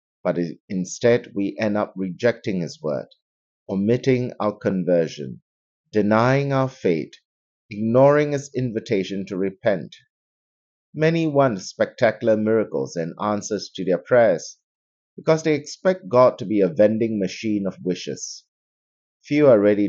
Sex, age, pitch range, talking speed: male, 60-79, 90-125 Hz, 125 wpm